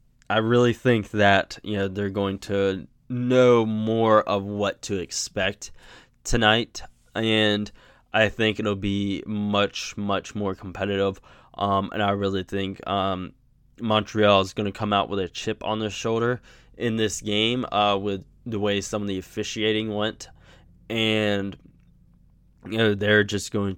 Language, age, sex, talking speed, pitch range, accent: English, 10-29, male, 155 wpm, 100-110 Hz, American